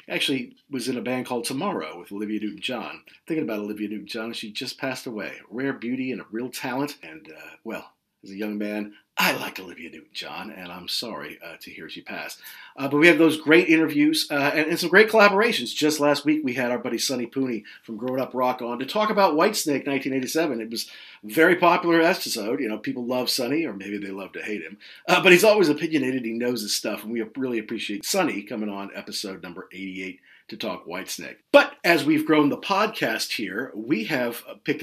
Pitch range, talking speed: 110-155 Hz, 215 wpm